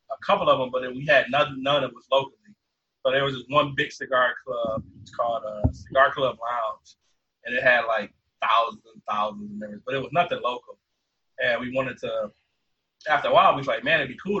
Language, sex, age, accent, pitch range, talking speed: English, male, 30-49, American, 125-180 Hz, 240 wpm